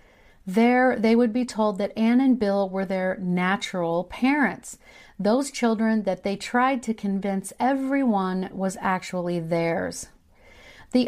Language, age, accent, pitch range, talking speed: English, 40-59, American, 185-235 Hz, 135 wpm